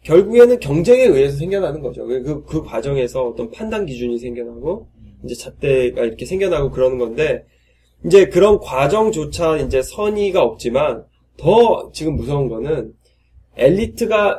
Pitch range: 120-195 Hz